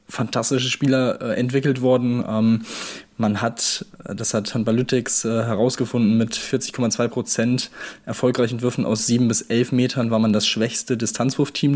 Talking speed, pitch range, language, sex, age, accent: 130 wpm, 115-130 Hz, German, male, 20-39, German